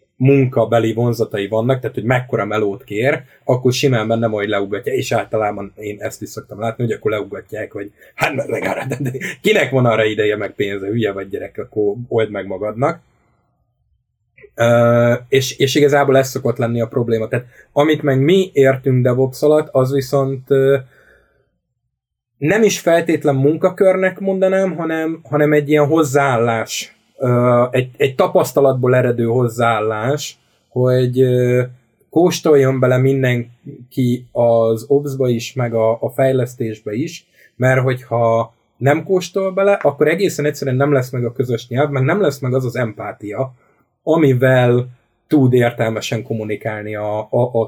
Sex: male